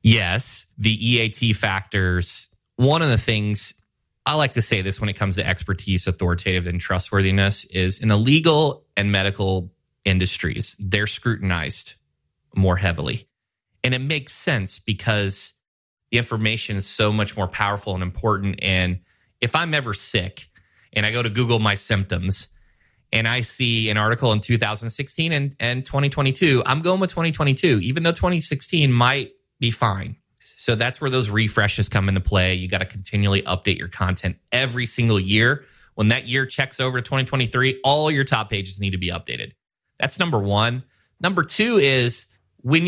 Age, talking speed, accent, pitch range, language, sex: 30-49, 165 wpm, American, 100-130 Hz, English, male